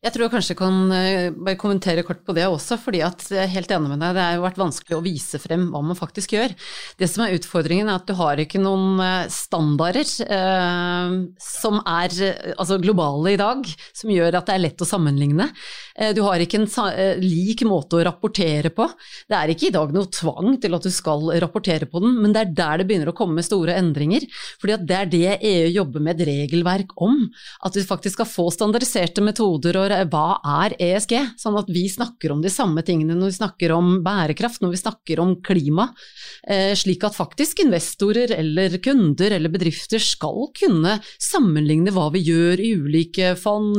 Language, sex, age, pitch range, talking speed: English, female, 30-49, 170-210 Hz, 195 wpm